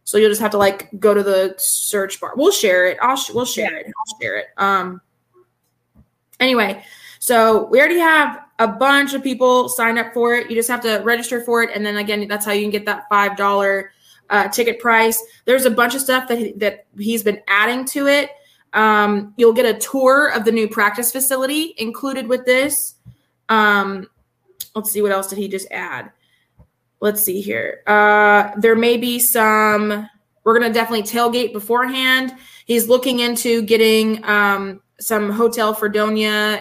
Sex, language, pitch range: female, English, 205-240 Hz